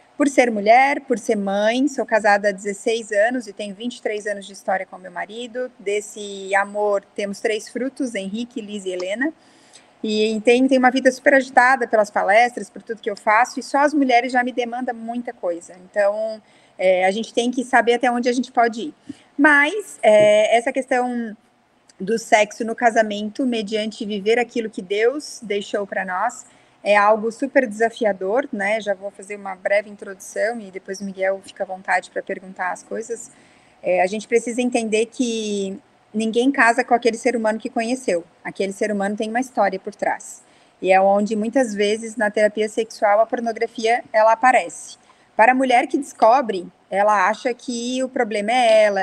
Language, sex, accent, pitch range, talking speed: Portuguese, female, Brazilian, 200-250 Hz, 180 wpm